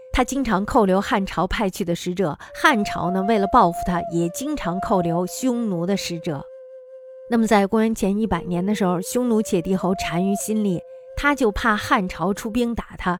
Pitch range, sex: 180-245 Hz, female